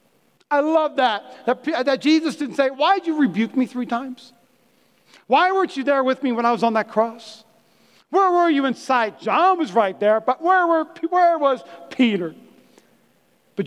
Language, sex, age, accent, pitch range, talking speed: English, male, 40-59, American, 210-265 Hz, 180 wpm